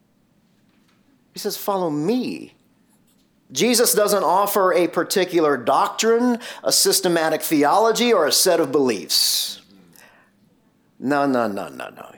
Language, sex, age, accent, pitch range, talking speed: English, male, 40-59, American, 145-215 Hz, 115 wpm